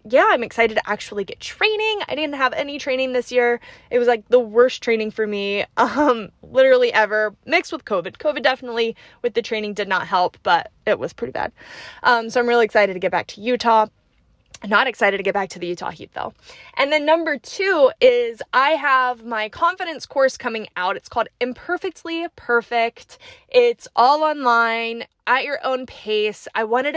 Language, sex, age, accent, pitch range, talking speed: English, female, 20-39, American, 225-295 Hz, 190 wpm